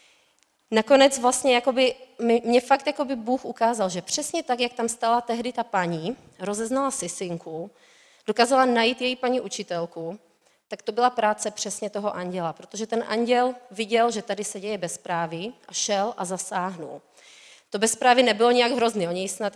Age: 30-49